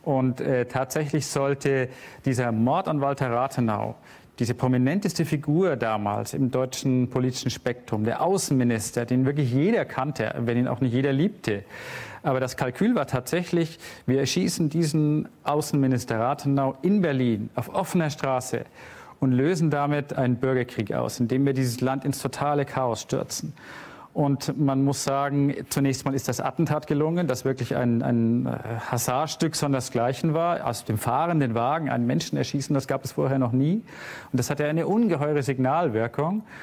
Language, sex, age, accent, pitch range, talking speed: German, male, 40-59, German, 125-145 Hz, 155 wpm